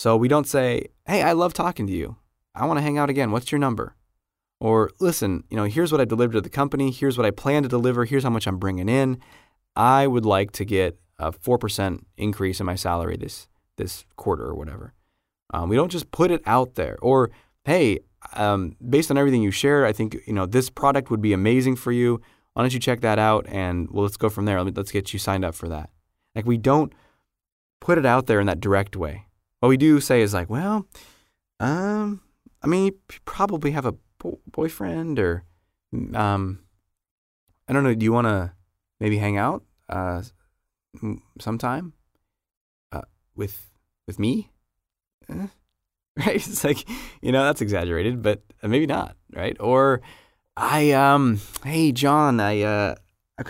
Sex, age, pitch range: male, 20-39, 95-140 Hz